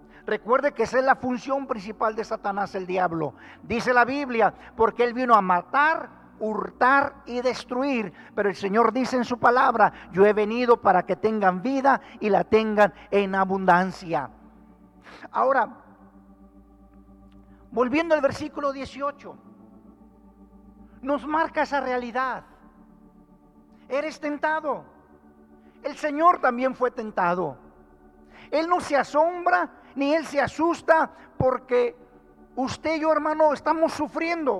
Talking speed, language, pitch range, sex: 125 wpm, Spanish, 205-300 Hz, male